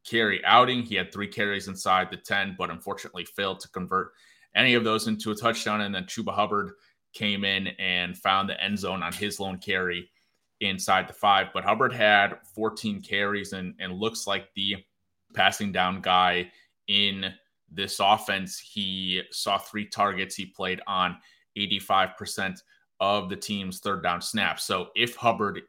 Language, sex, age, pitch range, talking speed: English, male, 20-39, 90-105 Hz, 165 wpm